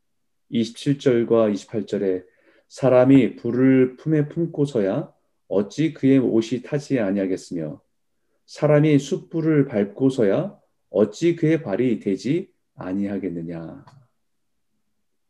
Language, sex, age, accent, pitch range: Korean, male, 30-49, native, 110-150 Hz